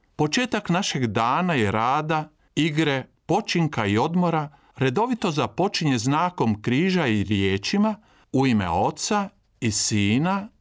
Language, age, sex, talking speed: Croatian, 50-69, male, 115 wpm